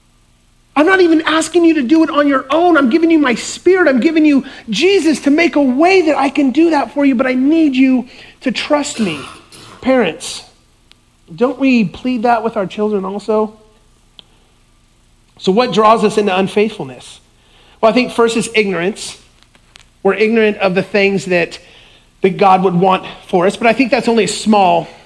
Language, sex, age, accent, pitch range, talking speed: English, male, 30-49, American, 170-230 Hz, 185 wpm